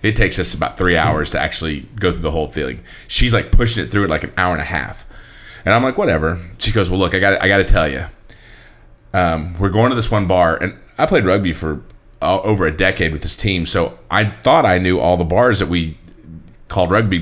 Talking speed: 245 wpm